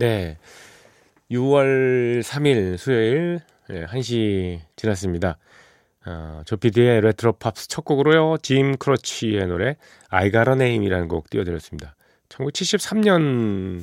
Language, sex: Korean, male